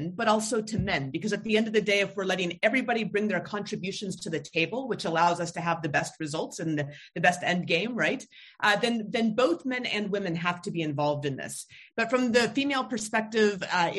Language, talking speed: English, 235 wpm